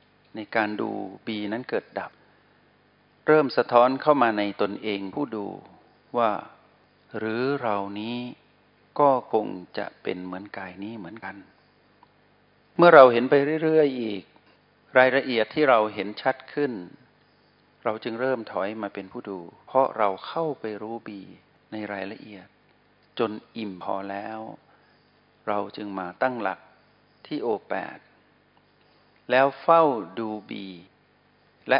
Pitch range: 100-130 Hz